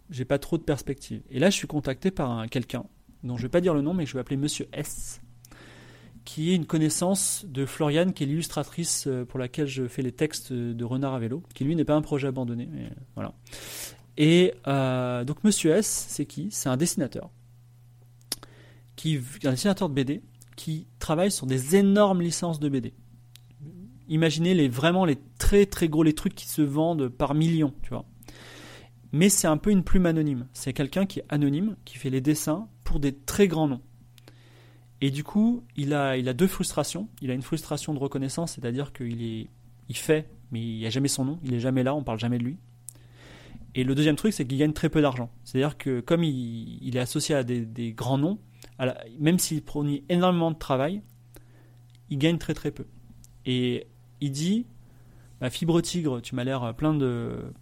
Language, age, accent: French, 30-49, French